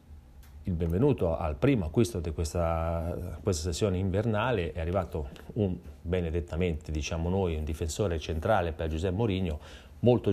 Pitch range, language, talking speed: 80-95 Hz, Italian, 135 wpm